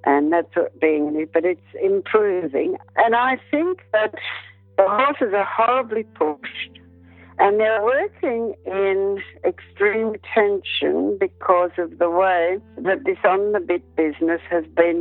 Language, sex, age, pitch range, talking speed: English, female, 60-79, 160-225 Hz, 135 wpm